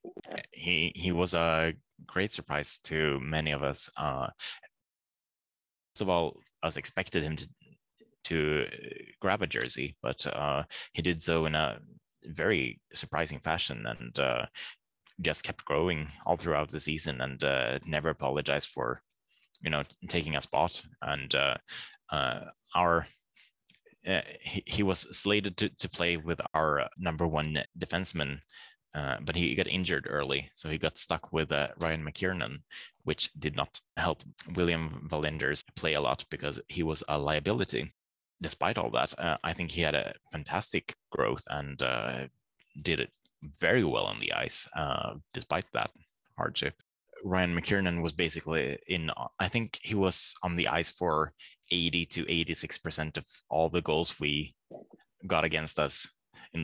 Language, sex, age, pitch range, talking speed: English, male, 20-39, 75-85 Hz, 155 wpm